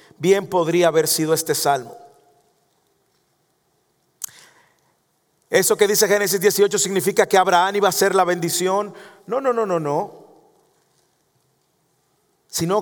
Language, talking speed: English, 115 wpm